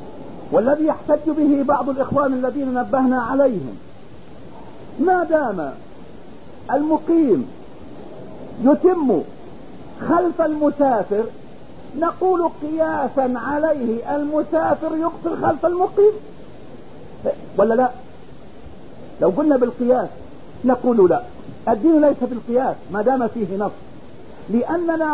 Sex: male